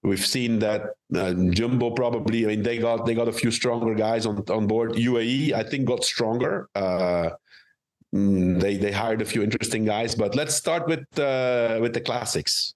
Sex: male